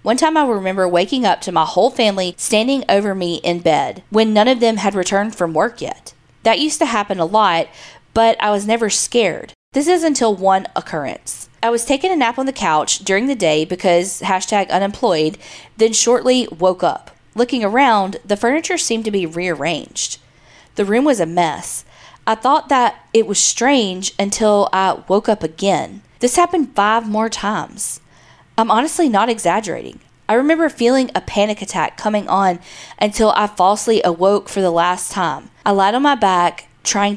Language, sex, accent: English, female, American